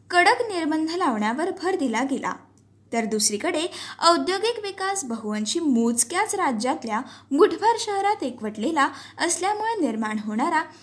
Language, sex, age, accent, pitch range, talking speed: Marathi, female, 20-39, native, 235-355 Hz, 105 wpm